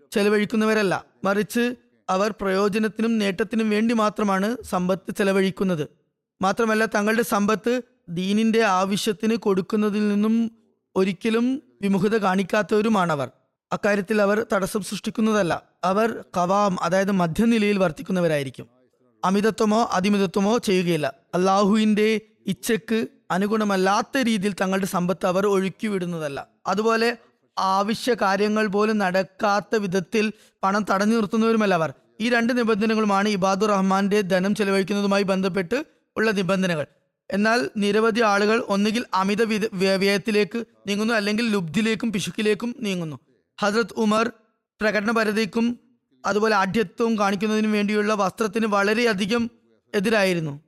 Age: 20-39